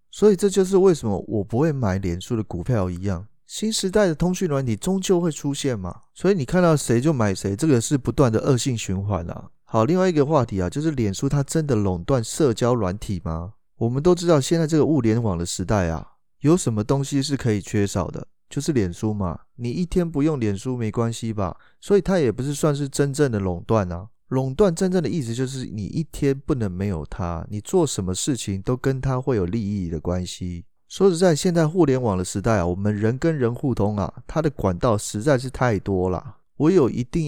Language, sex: Chinese, male